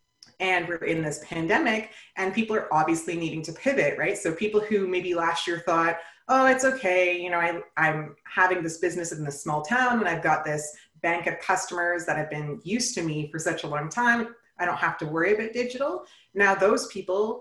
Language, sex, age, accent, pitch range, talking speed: English, female, 30-49, American, 160-215 Hz, 210 wpm